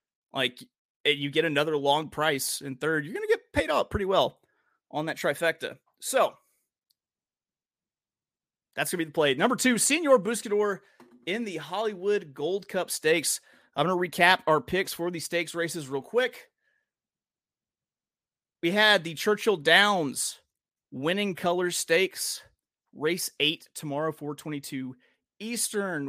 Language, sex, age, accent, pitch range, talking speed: English, male, 30-49, American, 145-190 Hz, 140 wpm